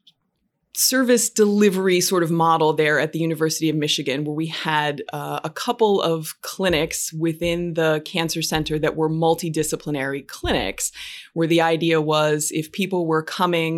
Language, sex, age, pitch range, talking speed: English, female, 20-39, 150-165 Hz, 150 wpm